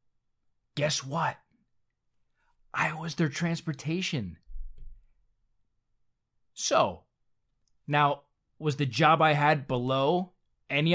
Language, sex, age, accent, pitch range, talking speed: English, male, 20-39, American, 120-165 Hz, 80 wpm